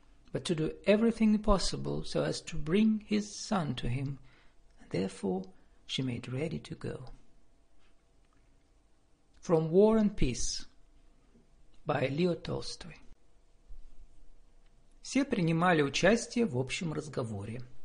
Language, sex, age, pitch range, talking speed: Russian, male, 50-69, 140-200 Hz, 85 wpm